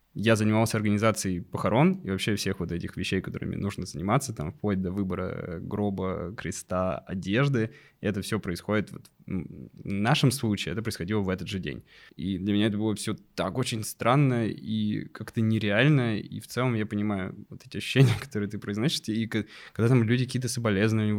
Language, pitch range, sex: Russian, 100-125 Hz, male